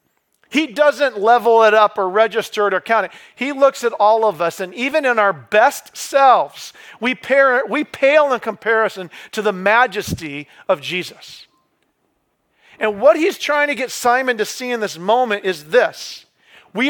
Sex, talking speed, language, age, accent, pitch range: male, 170 wpm, English, 40-59, American, 195-270 Hz